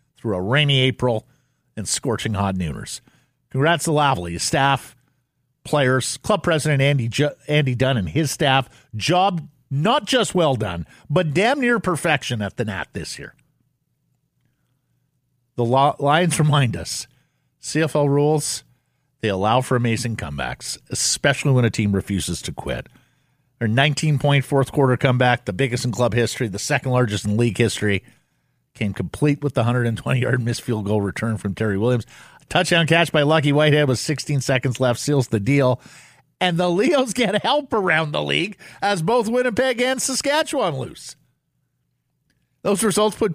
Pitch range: 120-170 Hz